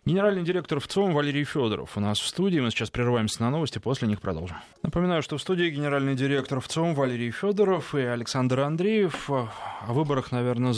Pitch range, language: 110-150 Hz, Russian